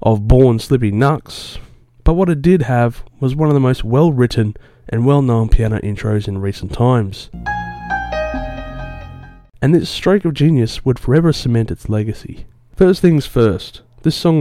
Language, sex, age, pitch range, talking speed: English, male, 30-49, 105-135 Hz, 155 wpm